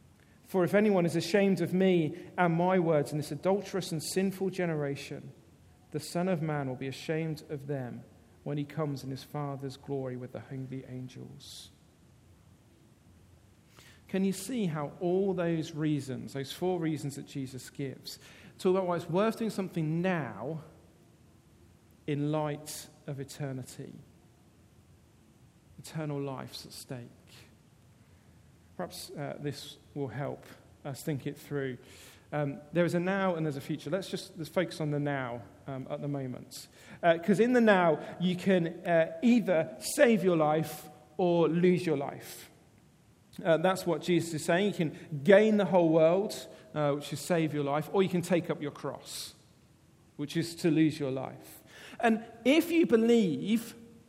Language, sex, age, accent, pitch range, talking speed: English, male, 40-59, British, 140-185 Hz, 160 wpm